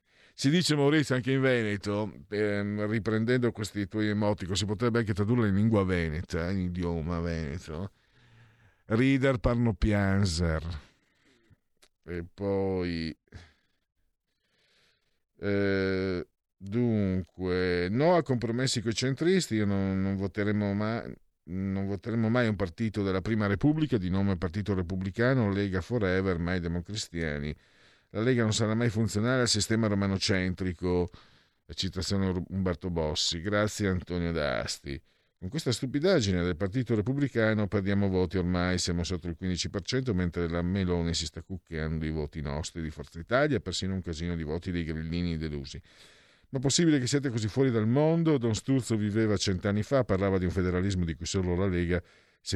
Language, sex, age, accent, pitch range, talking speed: Italian, male, 50-69, native, 85-110 Hz, 145 wpm